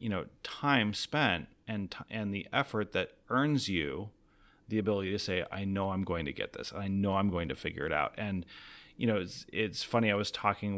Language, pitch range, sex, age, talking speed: English, 95-115 Hz, male, 30-49, 225 wpm